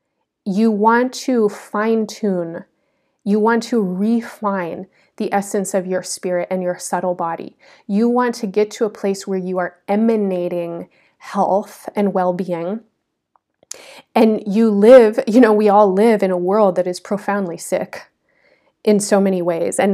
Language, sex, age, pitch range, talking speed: English, female, 30-49, 185-220 Hz, 160 wpm